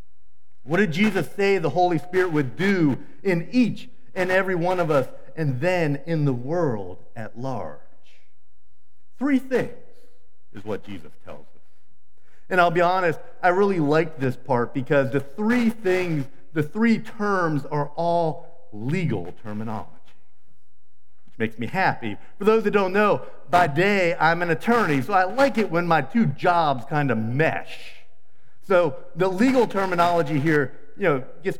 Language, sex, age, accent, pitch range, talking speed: English, male, 50-69, American, 115-180 Hz, 160 wpm